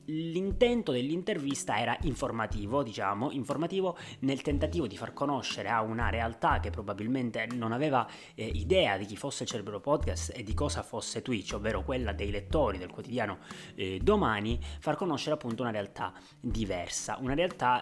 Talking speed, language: 160 wpm, Italian